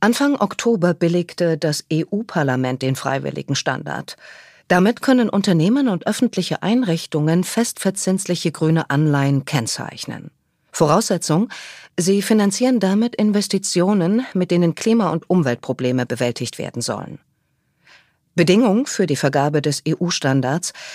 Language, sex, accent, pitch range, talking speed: German, female, German, 145-200 Hz, 105 wpm